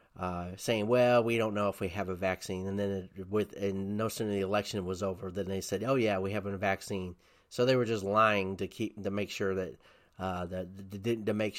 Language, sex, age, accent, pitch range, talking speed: English, male, 30-49, American, 95-105 Hz, 245 wpm